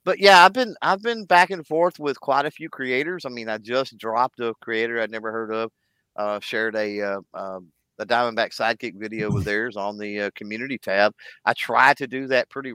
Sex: male